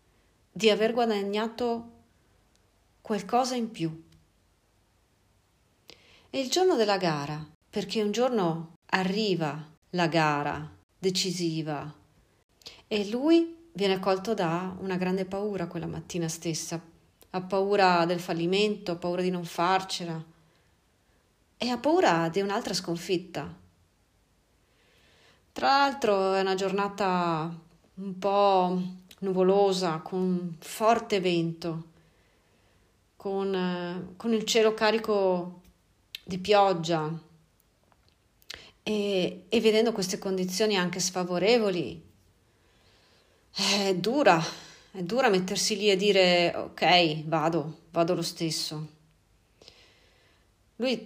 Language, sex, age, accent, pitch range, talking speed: Italian, female, 40-59, native, 160-200 Hz, 100 wpm